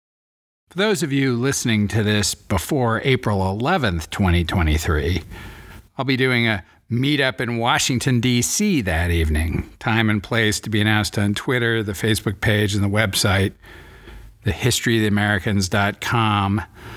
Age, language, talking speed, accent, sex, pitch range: 50-69, English, 125 wpm, American, male, 100-120 Hz